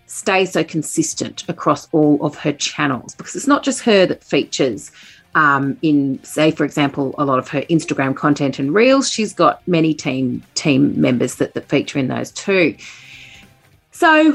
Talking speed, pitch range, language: 170 wpm, 145-205 Hz, English